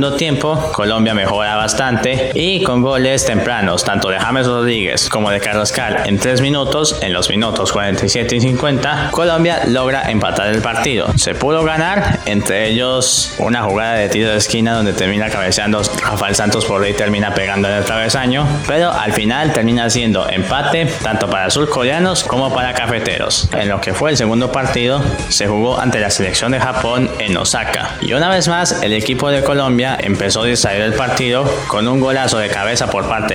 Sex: male